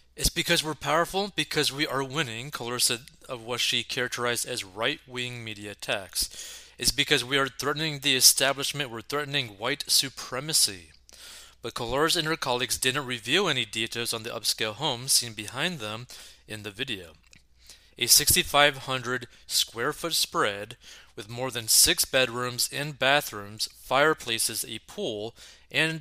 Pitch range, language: 115-145 Hz, English